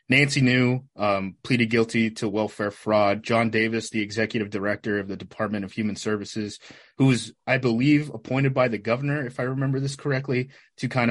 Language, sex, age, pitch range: English, male, 20-39, 110-135 Hz